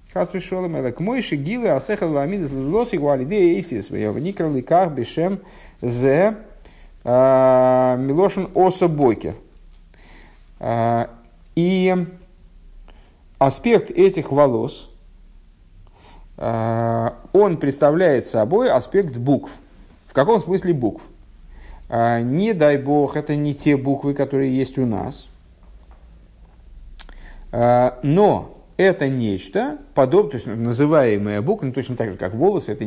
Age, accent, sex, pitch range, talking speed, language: 50-69, native, male, 105-145 Hz, 110 wpm, Russian